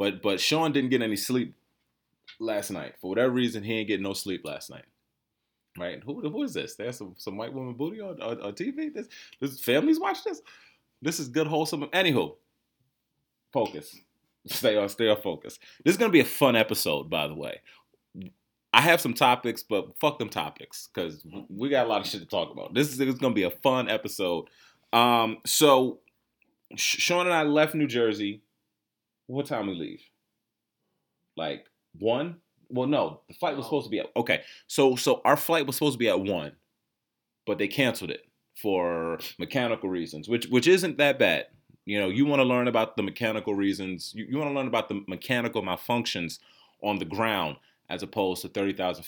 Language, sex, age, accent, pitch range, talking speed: English, male, 30-49, American, 105-145 Hz, 195 wpm